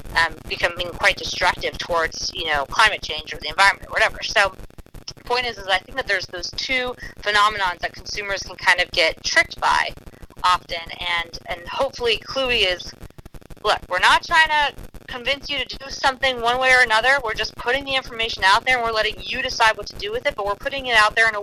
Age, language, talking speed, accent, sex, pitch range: 30-49, English, 220 wpm, American, female, 185-240 Hz